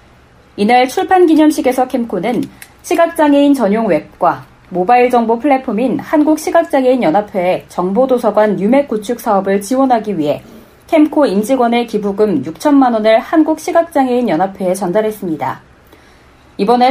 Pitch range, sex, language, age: 205-285 Hz, female, Korean, 30-49